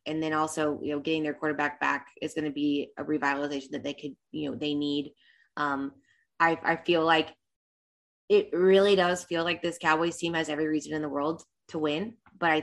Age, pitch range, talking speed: 20-39, 155-180 Hz, 215 wpm